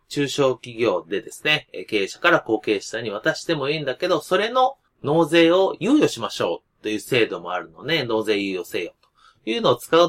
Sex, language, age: male, Japanese, 30-49